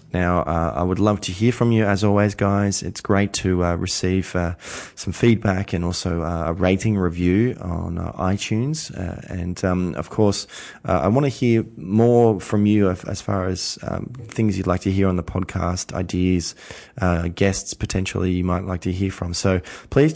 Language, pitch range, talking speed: English, 90-110 Hz, 195 wpm